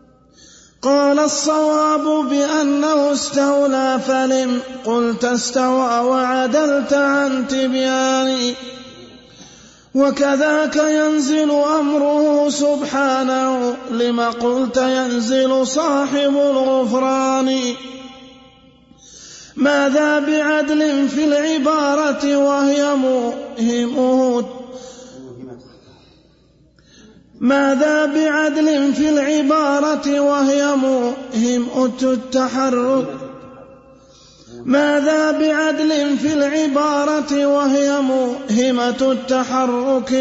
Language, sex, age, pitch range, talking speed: Arabic, male, 30-49, 260-290 Hz, 60 wpm